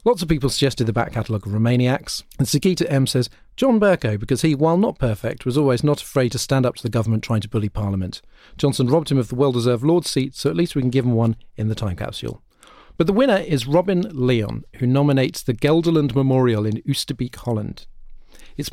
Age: 40-59